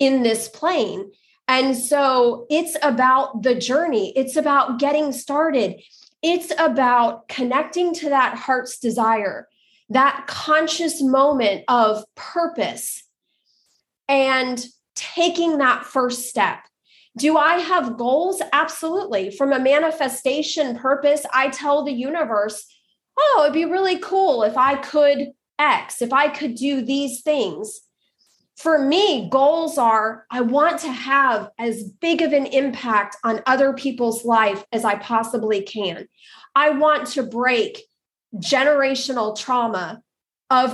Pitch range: 230-295 Hz